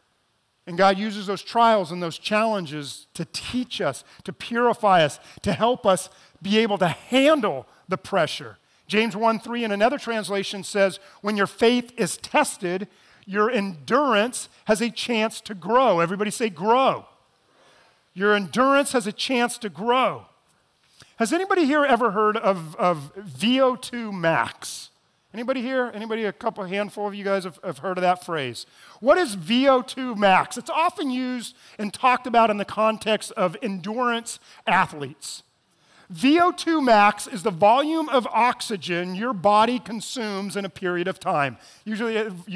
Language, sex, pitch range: English, male, 175-235 Hz